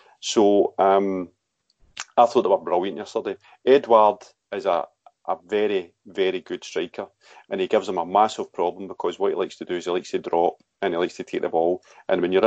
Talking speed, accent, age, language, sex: 210 wpm, British, 40-59, English, male